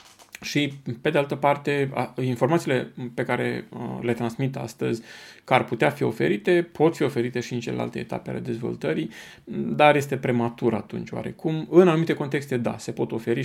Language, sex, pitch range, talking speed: Romanian, male, 115-150 Hz, 165 wpm